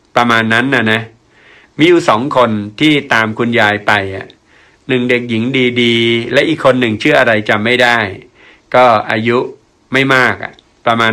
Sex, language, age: male, Thai, 60-79